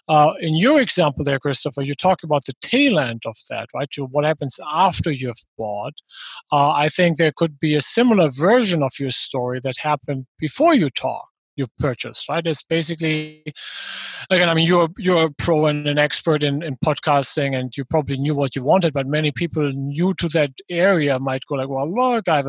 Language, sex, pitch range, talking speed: English, male, 140-170 Hz, 205 wpm